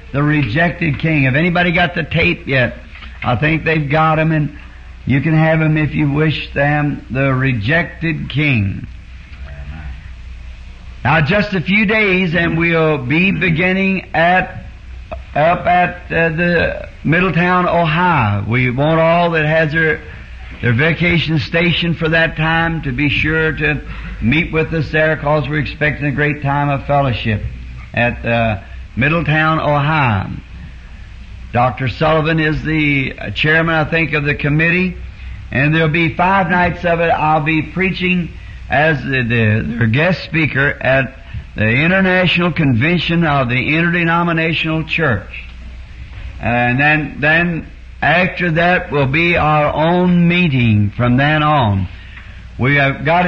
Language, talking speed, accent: English, 140 wpm, American